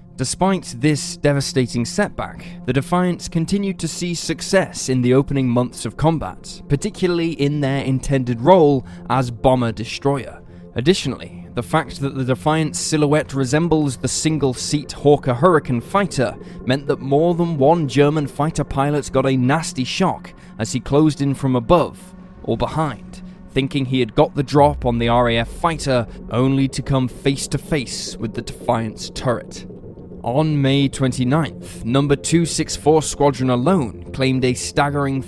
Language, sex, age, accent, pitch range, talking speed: English, male, 10-29, British, 125-160 Hz, 150 wpm